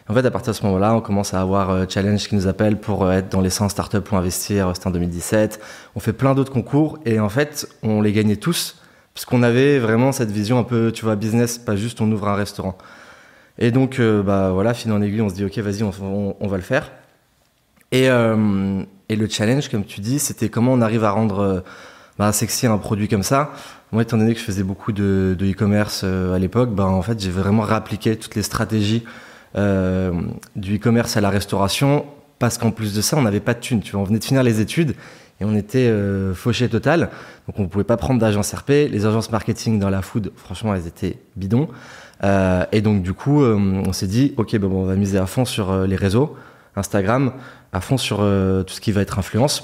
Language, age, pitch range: French, 20-39, 95-120 Hz